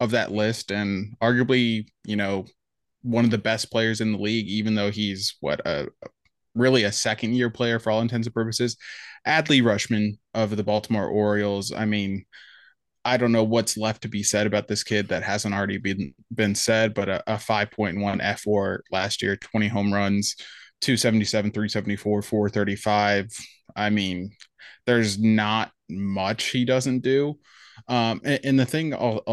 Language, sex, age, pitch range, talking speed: English, male, 20-39, 100-120 Hz, 170 wpm